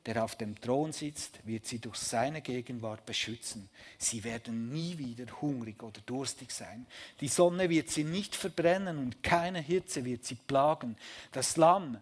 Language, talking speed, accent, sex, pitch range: German, 165 wpm, Swiss, male, 115-150 Hz